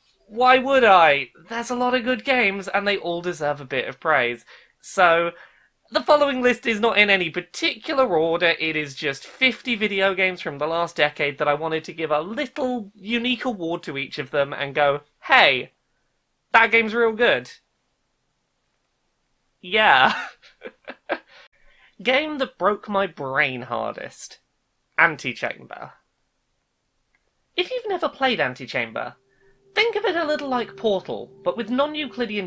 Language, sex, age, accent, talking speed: English, male, 20-39, British, 150 wpm